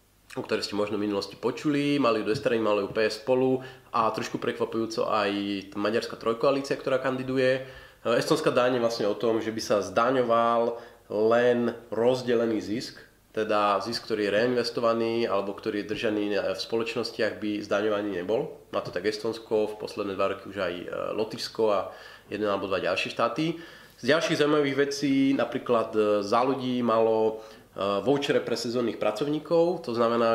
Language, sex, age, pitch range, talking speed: Slovak, male, 30-49, 110-130 Hz, 160 wpm